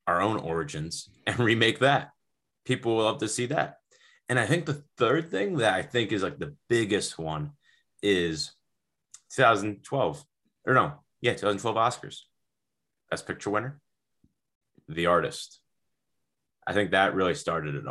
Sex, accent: male, American